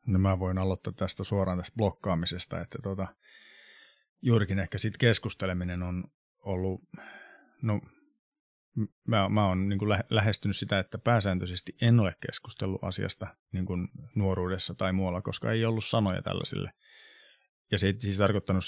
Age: 30-49